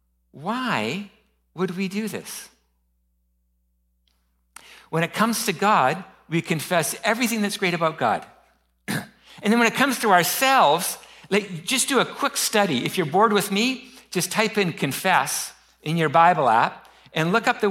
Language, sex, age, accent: English, male, 60-79, American